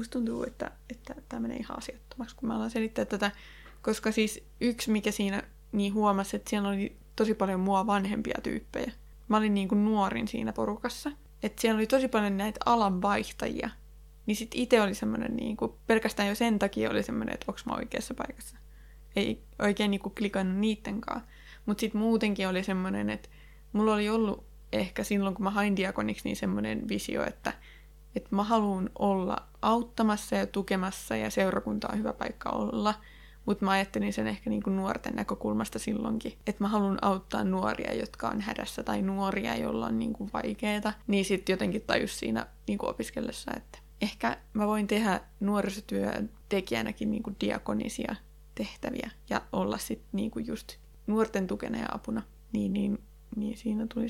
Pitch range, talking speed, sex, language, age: 195-225 Hz, 165 wpm, female, Finnish, 20-39